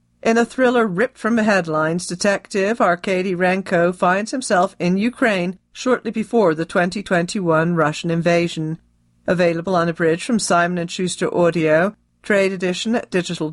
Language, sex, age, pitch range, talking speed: English, female, 40-59, 170-210 Hz, 140 wpm